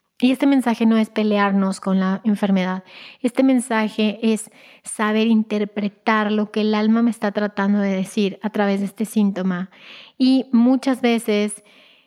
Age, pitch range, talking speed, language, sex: 30-49, 200-230 Hz, 155 wpm, Spanish, female